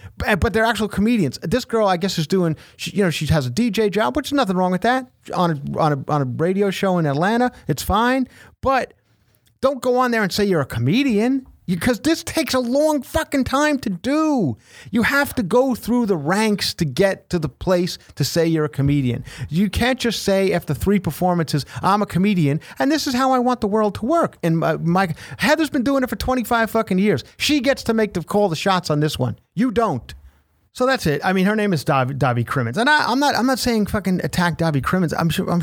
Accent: American